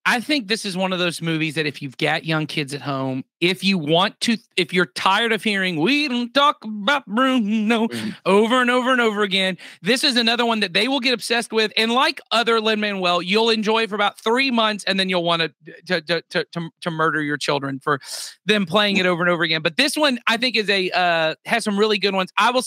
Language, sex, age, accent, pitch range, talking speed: English, male, 40-59, American, 165-220 Hz, 245 wpm